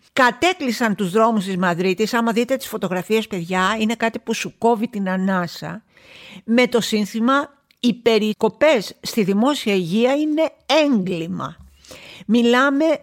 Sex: female